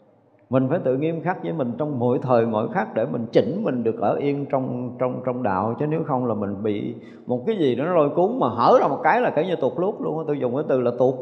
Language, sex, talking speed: Vietnamese, male, 285 wpm